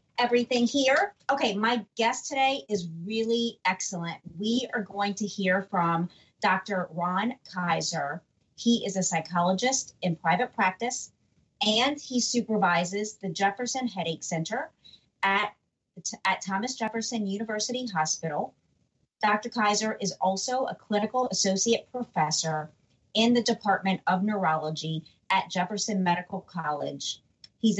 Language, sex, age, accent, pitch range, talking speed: English, female, 40-59, American, 180-225 Hz, 120 wpm